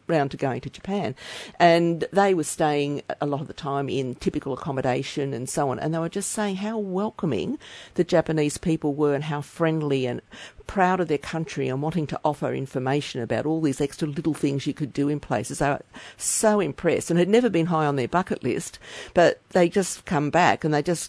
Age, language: 50-69, English